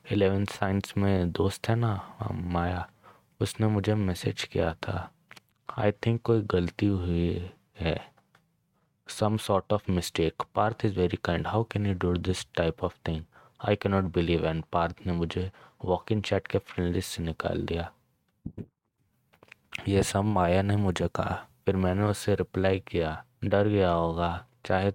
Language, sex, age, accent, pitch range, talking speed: Hindi, male, 20-39, native, 85-100 Hz, 150 wpm